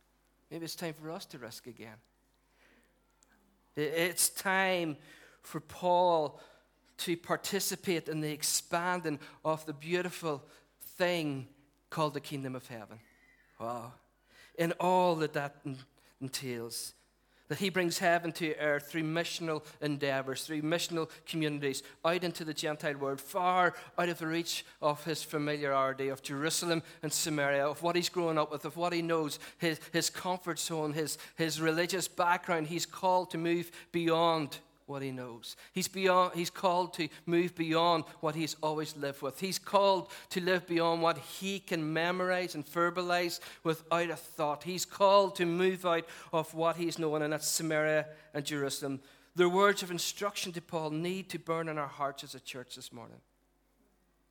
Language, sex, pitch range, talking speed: English, male, 145-175 Hz, 160 wpm